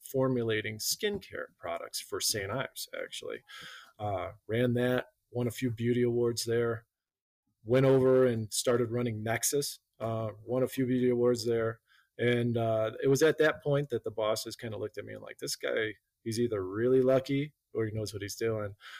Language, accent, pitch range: English, American, 115-140 Hz